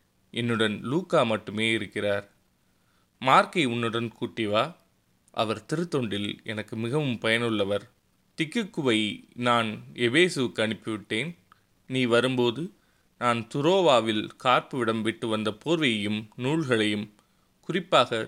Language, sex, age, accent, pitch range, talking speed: Tamil, male, 20-39, native, 105-130 Hz, 90 wpm